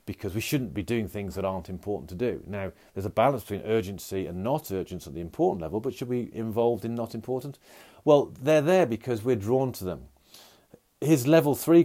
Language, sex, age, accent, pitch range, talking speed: English, male, 40-59, British, 100-130 Hz, 220 wpm